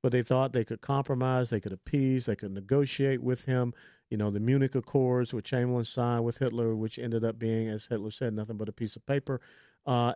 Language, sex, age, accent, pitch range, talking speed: English, male, 50-69, American, 110-135 Hz, 225 wpm